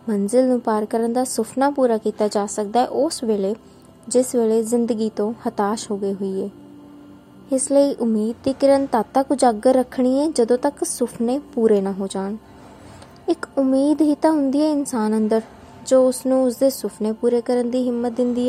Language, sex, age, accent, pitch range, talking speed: Hindi, female, 20-39, native, 215-255 Hz, 140 wpm